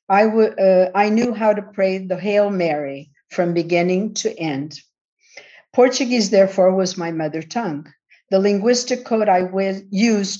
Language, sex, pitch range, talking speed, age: English, female, 175-210 Hz, 140 wpm, 50-69